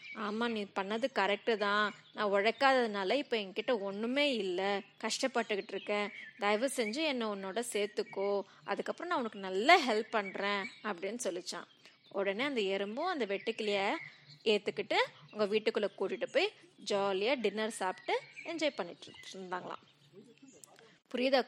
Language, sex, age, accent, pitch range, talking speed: Tamil, female, 20-39, native, 200-260 Hz, 115 wpm